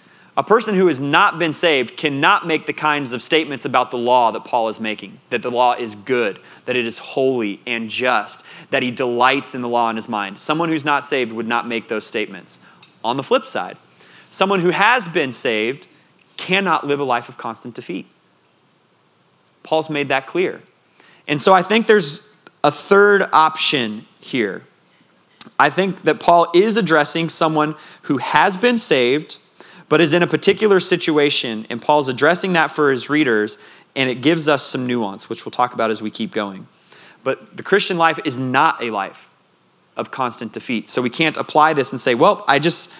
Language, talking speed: English, 190 wpm